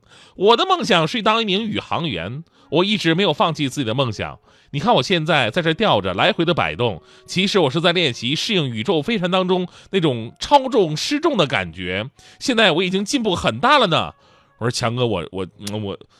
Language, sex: Chinese, male